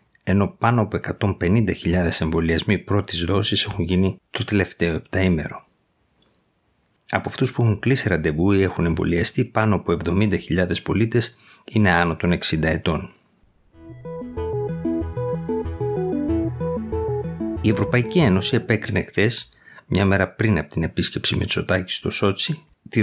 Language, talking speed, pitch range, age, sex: Greek, 115 wpm, 90-110 Hz, 50-69, male